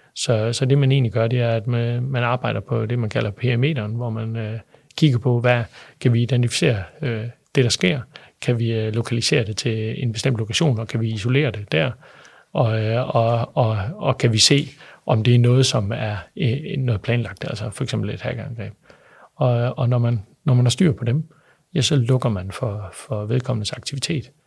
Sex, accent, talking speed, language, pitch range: male, native, 205 wpm, Danish, 110-130 Hz